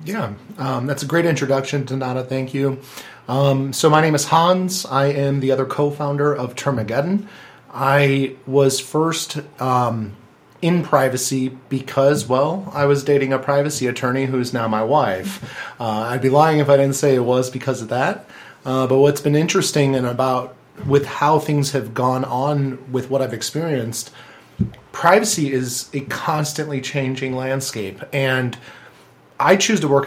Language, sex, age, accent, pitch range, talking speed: English, male, 30-49, American, 130-150 Hz, 165 wpm